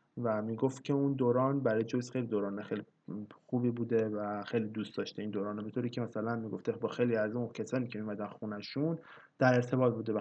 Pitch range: 110-135 Hz